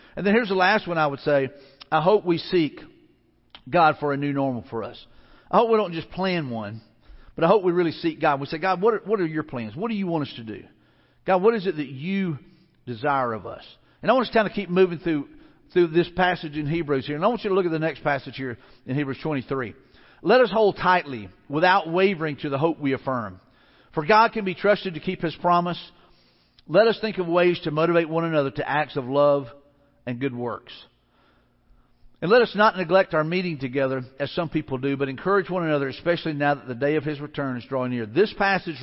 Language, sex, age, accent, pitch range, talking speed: English, male, 50-69, American, 140-180 Hz, 240 wpm